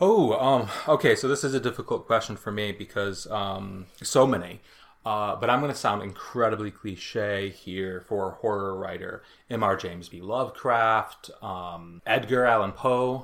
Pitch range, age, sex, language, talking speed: 95-115 Hz, 30-49, male, English, 160 wpm